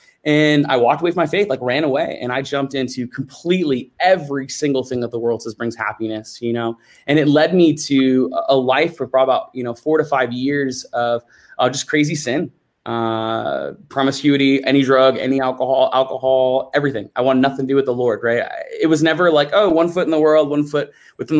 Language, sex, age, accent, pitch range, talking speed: English, male, 20-39, American, 125-155 Hz, 215 wpm